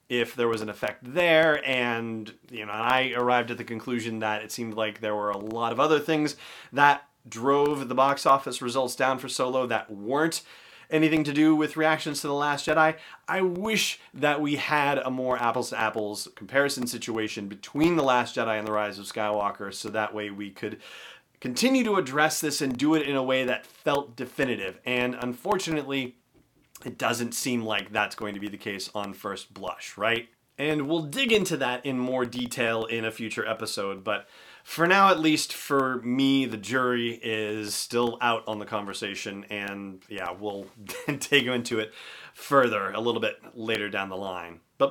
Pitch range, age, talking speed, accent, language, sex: 110-140 Hz, 30-49, 190 wpm, American, English, male